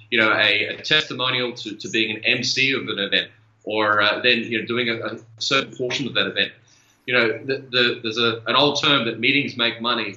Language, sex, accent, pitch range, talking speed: English, male, Australian, 110-135 Hz, 230 wpm